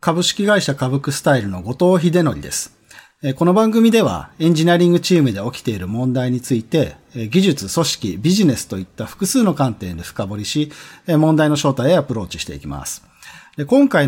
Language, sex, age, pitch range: Japanese, male, 40-59, 110-170 Hz